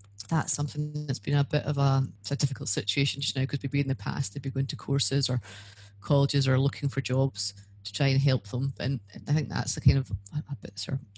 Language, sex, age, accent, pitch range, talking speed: English, female, 30-49, British, 125-140 Hz, 235 wpm